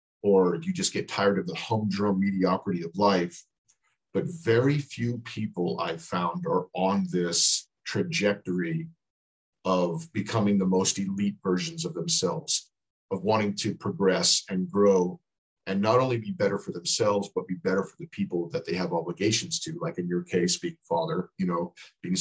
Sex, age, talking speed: male, 50-69, 170 wpm